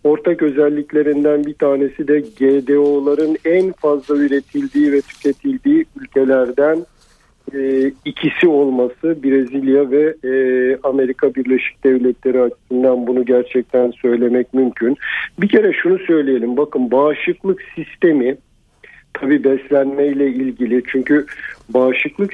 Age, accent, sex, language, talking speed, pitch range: 50-69, native, male, Turkish, 100 wpm, 135-165 Hz